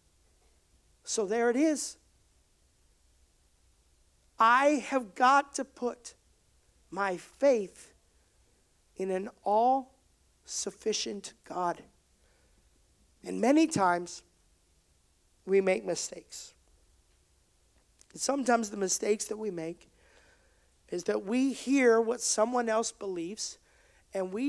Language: English